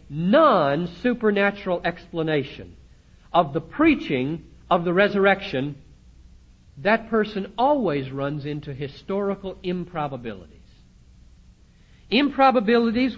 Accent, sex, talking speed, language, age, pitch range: American, male, 75 wpm, English, 60-79, 135-225 Hz